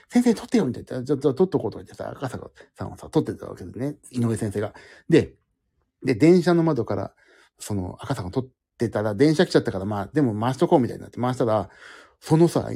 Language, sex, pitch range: Japanese, male, 115-190 Hz